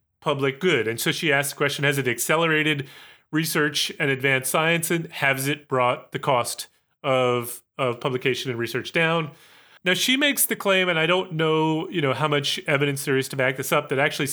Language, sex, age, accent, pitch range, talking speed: English, male, 30-49, American, 130-165 Hz, 205 wpm